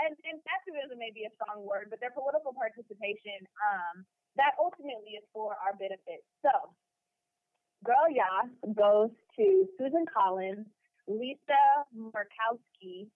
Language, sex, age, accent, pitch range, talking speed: English, female, 20-39, American, 200-260 Hz, 130 wpm